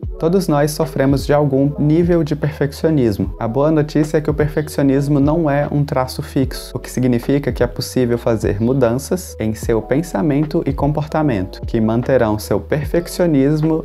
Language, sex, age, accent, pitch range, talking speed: Portuguese, male, 20-39, Brazilian, 115-150 Hz, 160 wpm